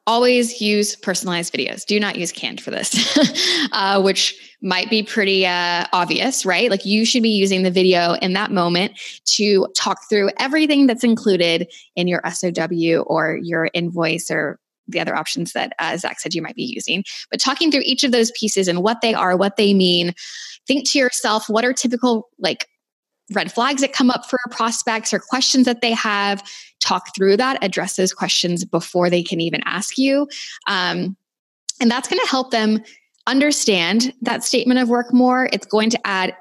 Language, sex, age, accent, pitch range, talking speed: English, female, 10-29, American, 175-240 Hz, 190 wpm